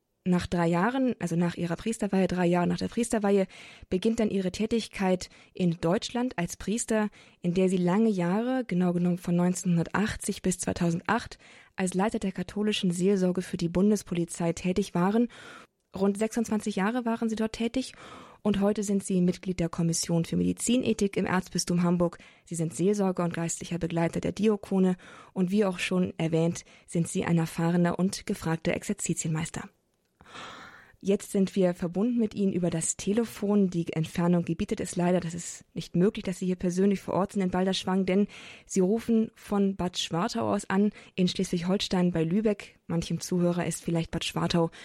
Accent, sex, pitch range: German, female, 175-210 Hz